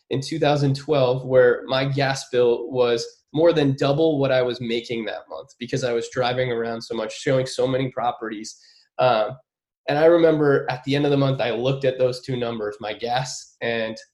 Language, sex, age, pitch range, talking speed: English, male, 20-39, 125-140 Hz, 195 wpm